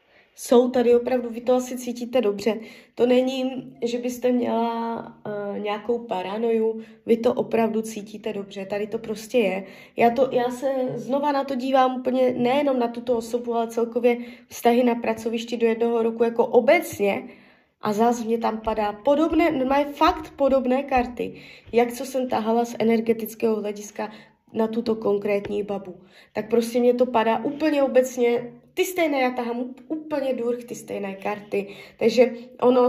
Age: 20-39